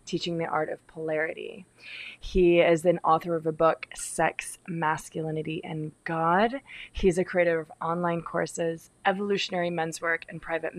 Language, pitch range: English, 160-180 Hz